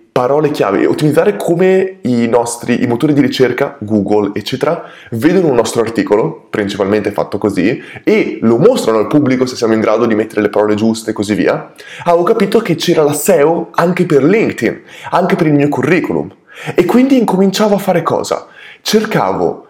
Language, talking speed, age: Italian, 175 wpm, 20-39